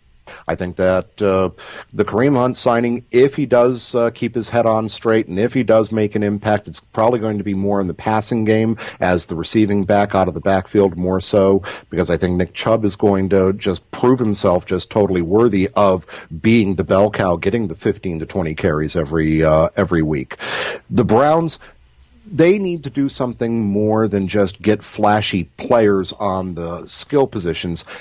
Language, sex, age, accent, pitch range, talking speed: English, male, 50-69, American, 90-115 Hz, 195 wpm